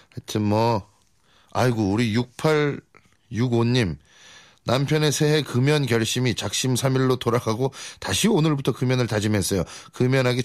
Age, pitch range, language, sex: 30-49, 105-150 Hz, Korean, male